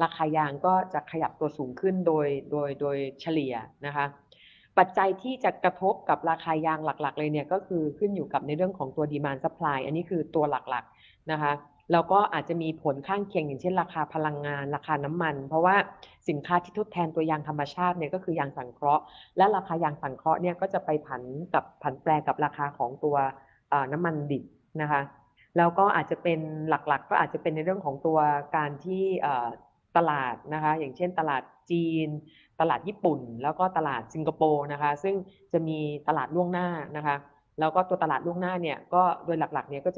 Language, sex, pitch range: Thai, female, 145-175 Hz